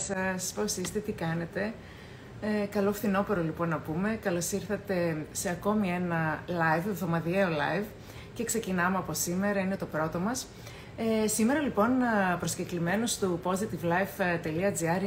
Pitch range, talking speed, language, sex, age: 175-220 Hz, 130 wpm, Greek, female, 30-49